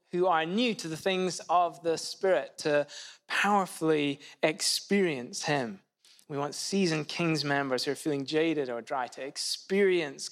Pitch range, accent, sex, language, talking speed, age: 140-190 Hz, British, male, English, 150 wpm, 20-39